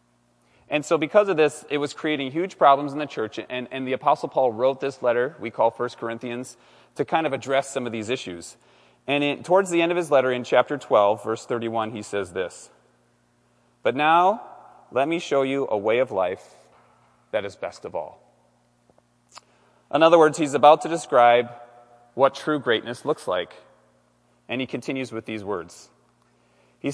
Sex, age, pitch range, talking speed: male, 30-49, 105-150 Hz, 185 wpm